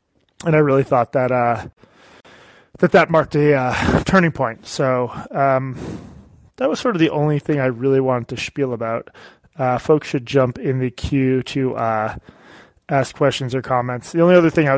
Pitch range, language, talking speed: 125-155 Hz, English, 185 wpm